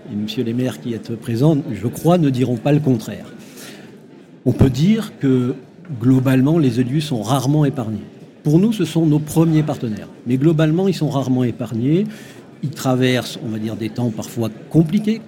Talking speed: 180 wpm